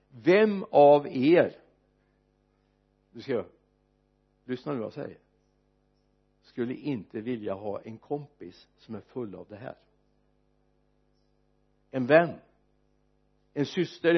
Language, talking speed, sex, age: Swedish, 110 wpm, male, 60-79